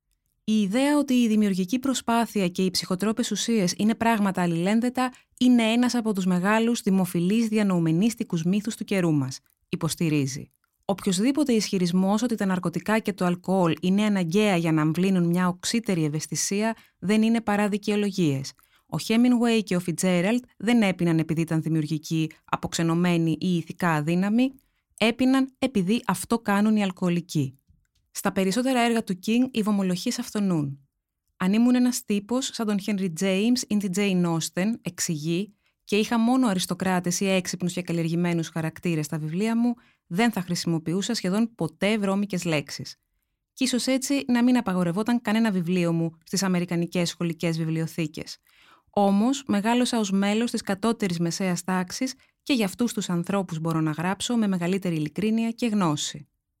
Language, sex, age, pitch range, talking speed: Greek, female, 20-39, 170-225 Hz, 145 wpm